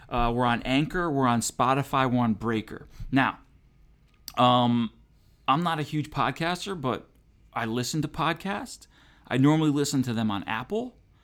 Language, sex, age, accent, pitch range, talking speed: English, male, 40-59, American, 110-140 Hz, 155 wpm